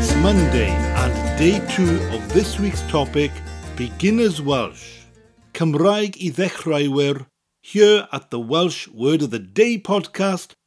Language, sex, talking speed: English, male, 130 wpm